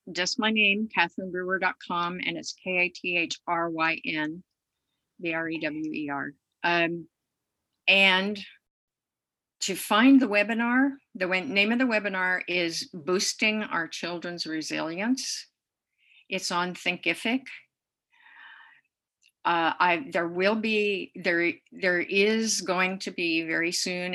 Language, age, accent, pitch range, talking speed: English, 50-69, American, 165-205 Hz, 100 wpm